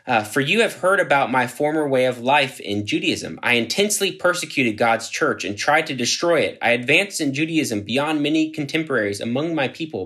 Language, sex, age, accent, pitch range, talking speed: English, male, 20-39, American, 105-150 Hz, 195 wpm